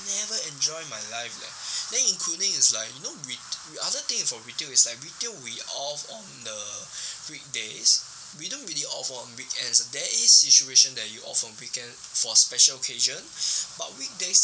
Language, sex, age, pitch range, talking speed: English, male, 10-29, 110-145 Hz, 175 wpm